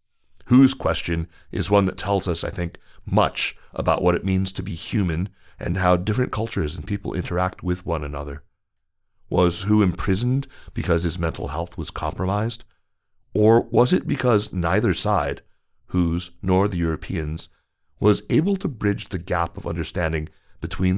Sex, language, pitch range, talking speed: male, English, 80-100 Hz, 155 wpm